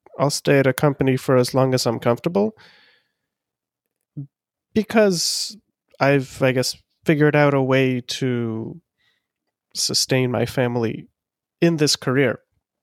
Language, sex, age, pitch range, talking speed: English, male, 30-49, 125-150 Hz, 120 wpm